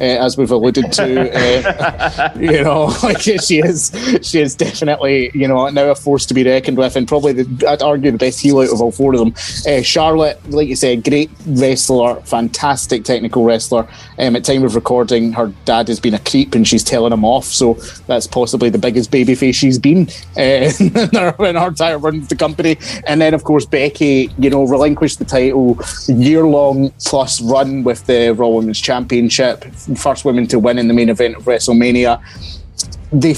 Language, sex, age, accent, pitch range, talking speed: English, male, 20-39, British, 120-150 Hz, 200 wpm